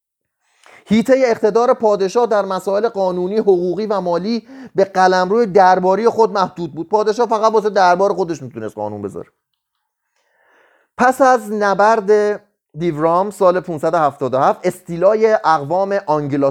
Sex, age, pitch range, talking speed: male, 30-49, 160-220 Hz, 120 wpm